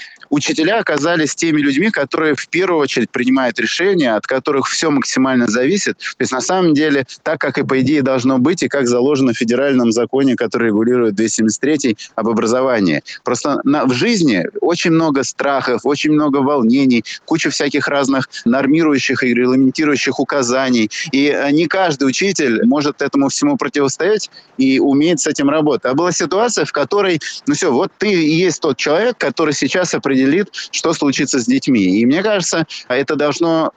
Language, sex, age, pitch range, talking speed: Russian, male, 20-39, 130-165 Hz, 165 wpm